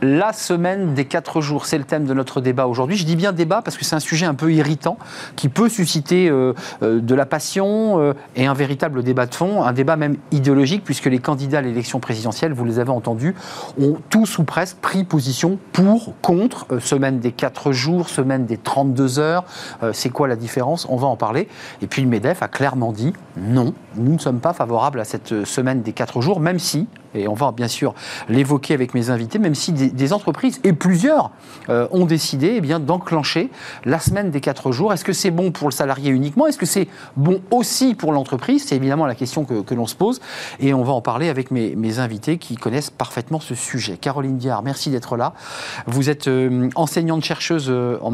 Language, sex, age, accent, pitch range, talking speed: French, male, 40-59, French, 125-165 Hz, 220 wpm